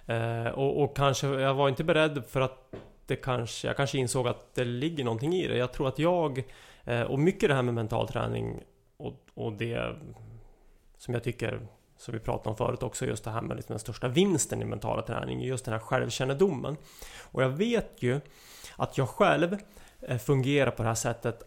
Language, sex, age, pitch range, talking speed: English, male, 30-49, 120-140 Hz, 195 wpm